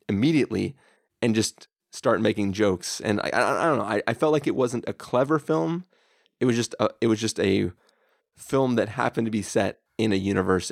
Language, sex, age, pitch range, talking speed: English, male, 30-49, 110-160 Hz, 215 wpm